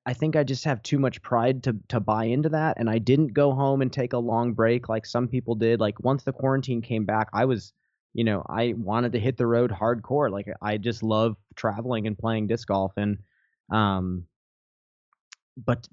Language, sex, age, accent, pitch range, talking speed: English, male, 20-39, American, 100-120 Hz, 210 wpm